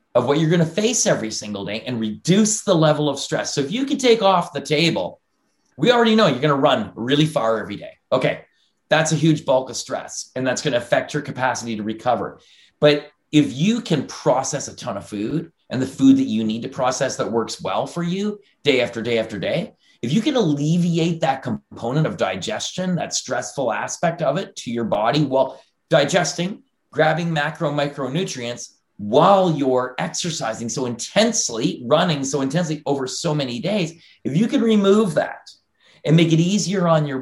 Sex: male